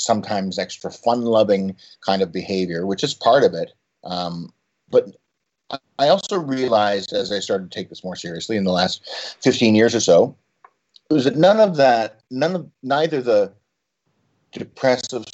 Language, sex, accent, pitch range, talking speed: English, male, American, 95-125 Hz, 170 wpm